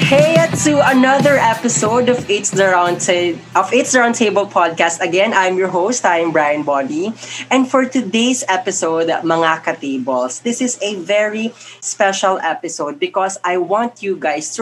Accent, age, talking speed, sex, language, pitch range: native, 20-39, 150 wpm, female, Filipino, 150-205 Hz